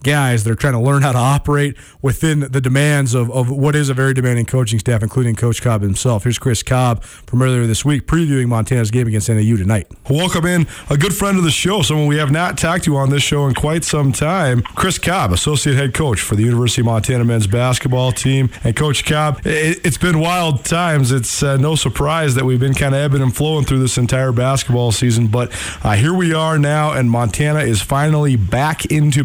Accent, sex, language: American, male, English